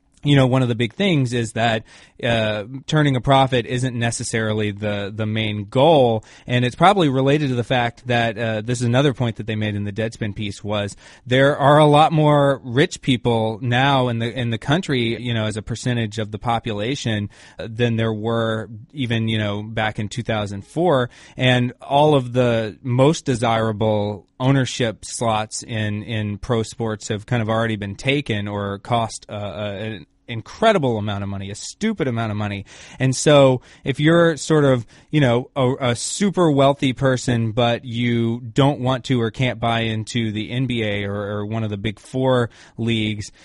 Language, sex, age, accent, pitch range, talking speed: English, male, 20-39, American, 110-135 Hz, 185 wpm